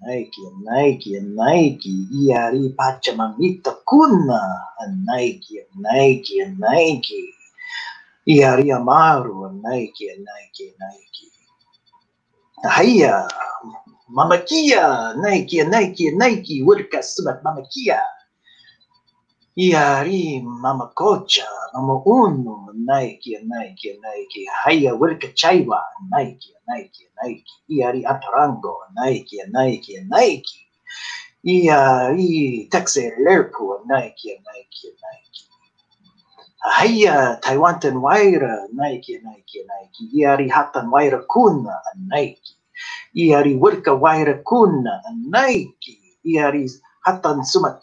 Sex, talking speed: male, 100 wpm